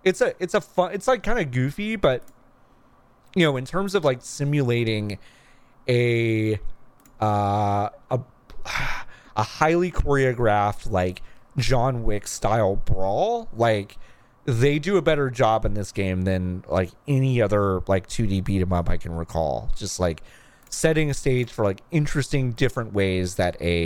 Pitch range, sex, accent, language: 95-135 Hz, male, American, English